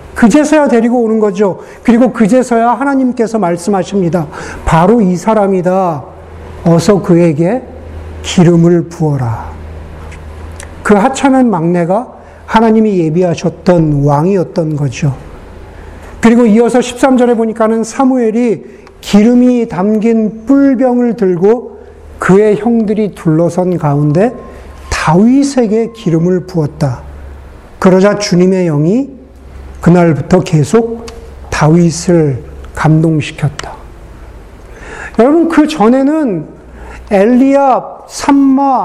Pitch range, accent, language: 170-250 Hz, native, Korean